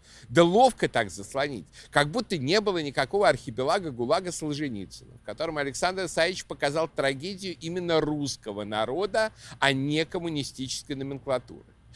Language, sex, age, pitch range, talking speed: Russian, male, 50-69, 130-185 Hz, 125 wpm